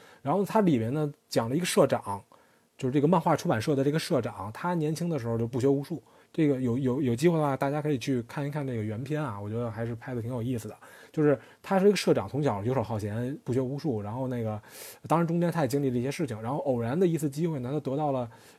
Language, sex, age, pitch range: Chinese, male, 20-39, 125-170 Hz